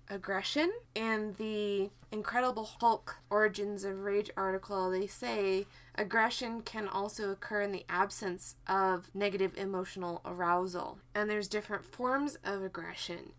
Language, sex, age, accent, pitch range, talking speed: English, female, 20-39, American, 190-230 Hz, 125 wpm